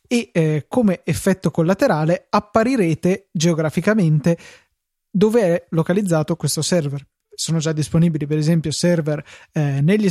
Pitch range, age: 155-190 Hz, 20-39